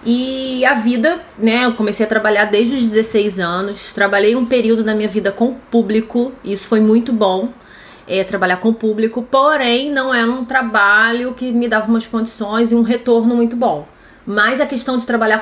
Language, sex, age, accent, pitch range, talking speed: Portuguese, female, 30-49, Brazilian, 215-255 Hz, 195 wpm